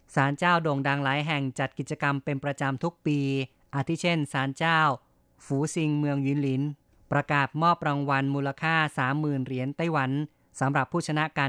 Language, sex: Thai, female